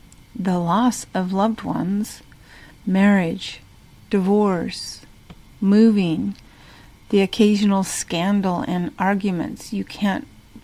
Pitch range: 190-225 Hz